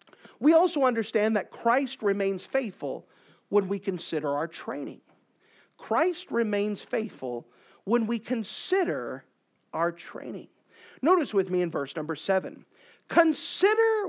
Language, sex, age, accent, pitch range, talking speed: English, male, 50-69, American, 195-310 Hz, 120 wpm